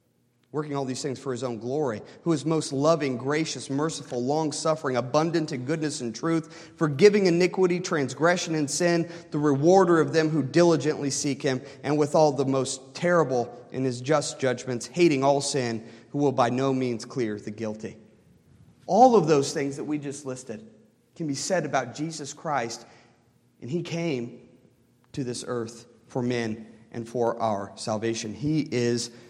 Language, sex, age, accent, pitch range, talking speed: English, male, 40-59, American, 130-175 Hz, 170 wpm